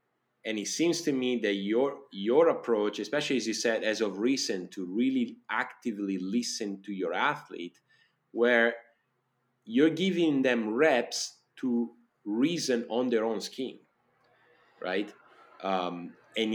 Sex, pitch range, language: male, 100-125 Hz, English